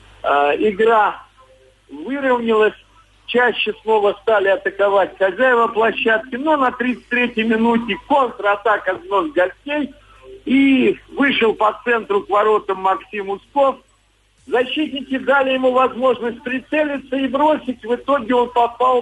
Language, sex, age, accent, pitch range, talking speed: Russian, male, 50-69, native, 215-275 Hz, 105 wpm